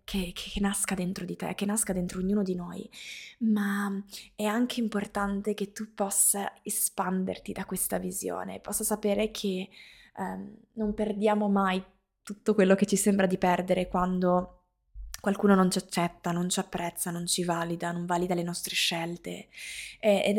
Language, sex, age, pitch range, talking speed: Italian, female, 20-39, 190-215 Hz, 160 wpm